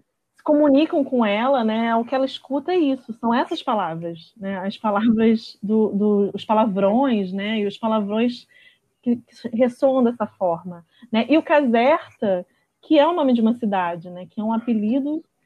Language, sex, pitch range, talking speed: Portuguese, female, 210-260 Hz, 175 wpm